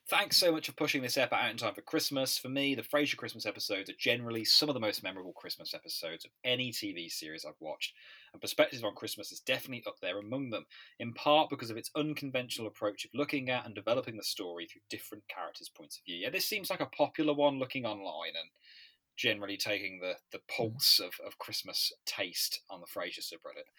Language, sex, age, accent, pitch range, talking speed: English, male, 20-39, British, 115-155 Hz, 215 wpm